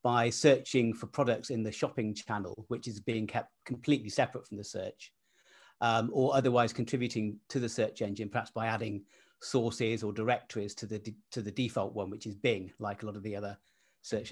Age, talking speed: 40-59, 195 wpm